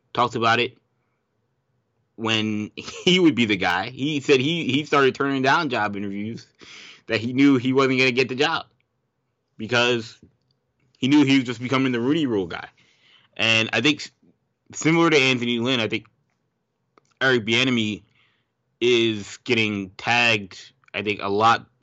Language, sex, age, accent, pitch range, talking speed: English, male, 20-39, American, 100-130 Hz, 155 wpm